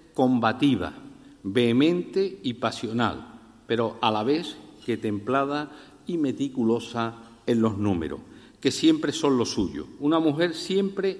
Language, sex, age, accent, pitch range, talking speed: Spanish, male, 50-69, Spanish, 115-150 Hz, 125 wpm